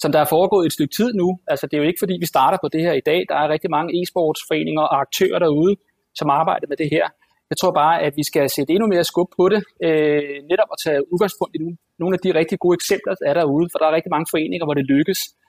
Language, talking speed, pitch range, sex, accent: Danish, 270 wpm, 155-185 Hz, male, native